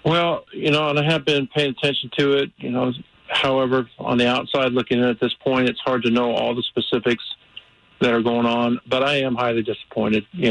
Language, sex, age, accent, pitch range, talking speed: English, male, 50-69, American, 115-130 Hz, 225 wpm